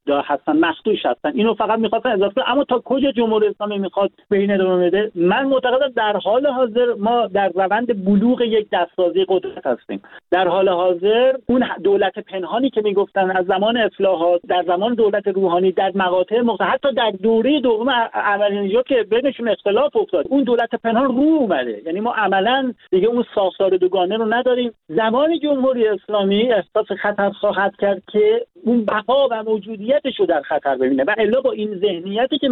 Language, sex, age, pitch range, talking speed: Persian, male, 50-69, 180-235 Hz, 165 wpm